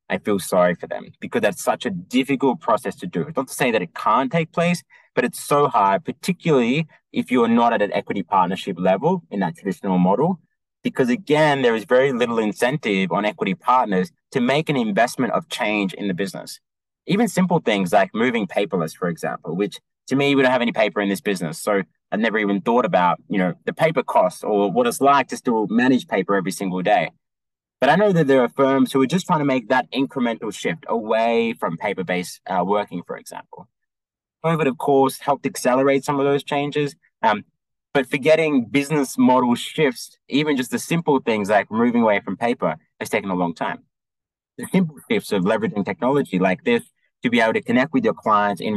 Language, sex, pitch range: English, male, 100-155 Hz